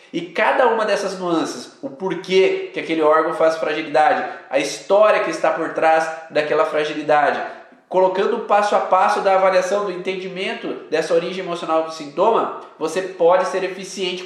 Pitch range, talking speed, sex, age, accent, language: 170-215 Hz, 160 wpm, male, 20-39, Brazilian, Portuguese